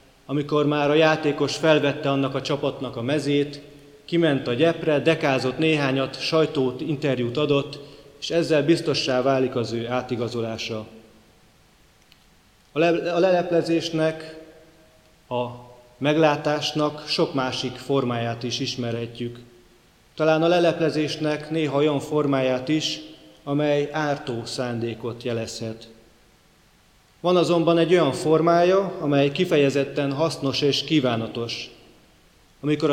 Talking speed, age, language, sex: 105 wpm, 30-49, Hungarian, male